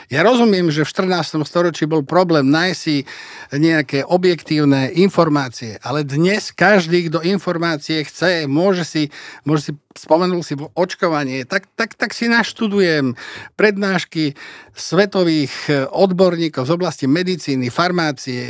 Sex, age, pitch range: male, 50-69, 130-170 Hz